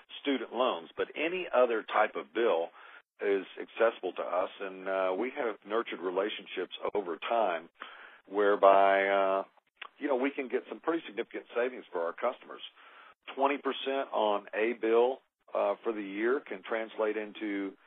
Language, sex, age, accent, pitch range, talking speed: English, male, 50-69, American, 100-125 Hz, 155 wpm